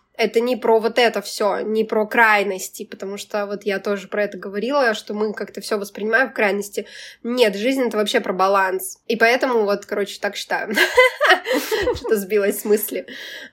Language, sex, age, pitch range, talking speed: Russian, female, 20-39, 205-240 Hz, 175 wpm